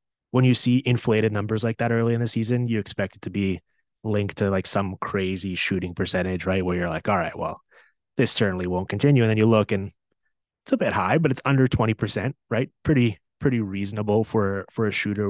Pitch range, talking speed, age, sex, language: 95-110 Hz, 215 wpm, 20-39, male, English